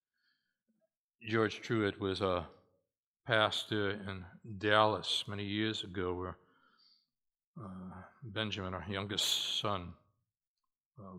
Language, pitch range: English, 105-125 Hz